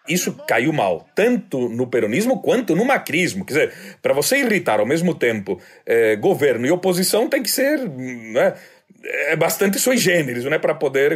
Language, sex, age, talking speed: Portuguese, male, 40-59, 165 wpm